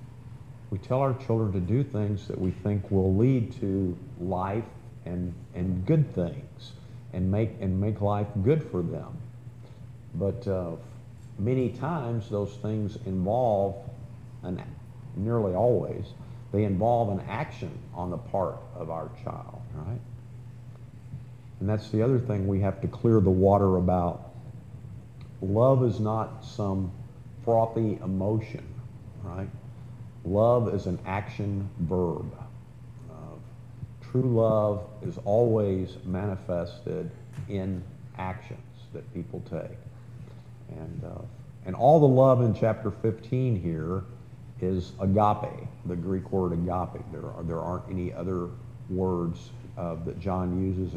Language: English